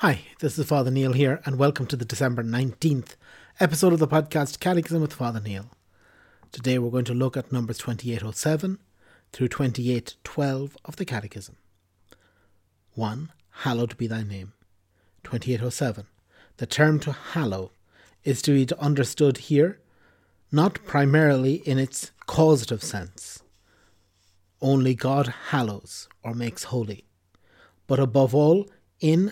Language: English